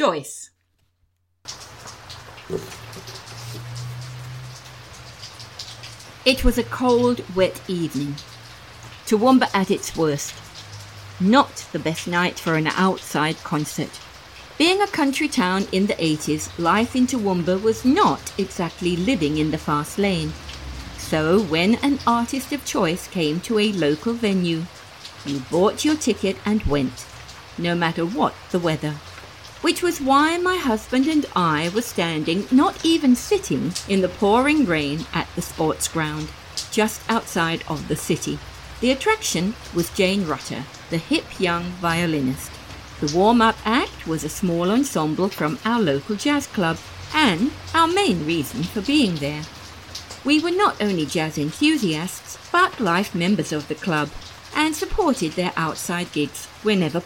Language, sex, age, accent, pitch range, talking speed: English, female, 50-69, British, 145-225 Hz, 135 wpm